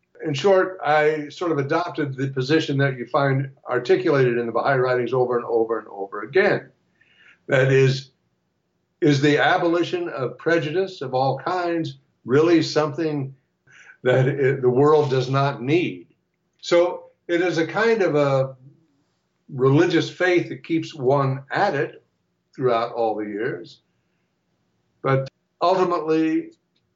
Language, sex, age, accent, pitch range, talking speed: English, male, 60-79, American, 130-160 Hz, 135 wpm